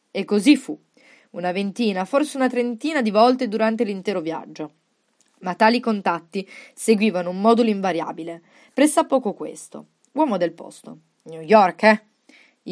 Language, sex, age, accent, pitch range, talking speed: Italian, female, 20-39, native, 180-245 Hz, 135 wpm